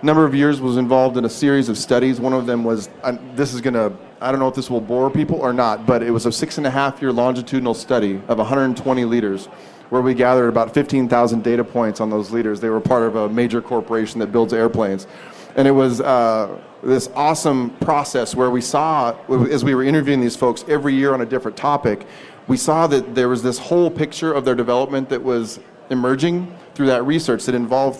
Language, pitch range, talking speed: English, 120-145 Hz, 220 wpm